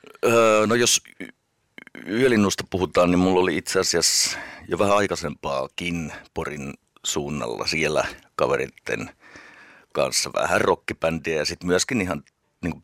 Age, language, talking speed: 60-79, Finnish, 110 wpm